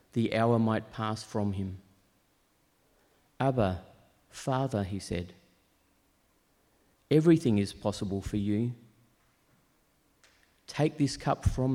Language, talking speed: English, 95 wpm